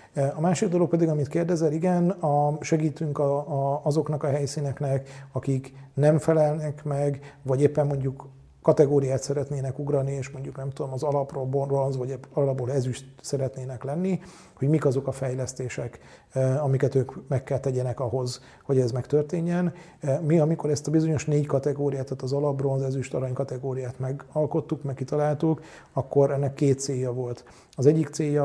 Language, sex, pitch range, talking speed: Hungarian, male, 130-150 Hz, 145 wpm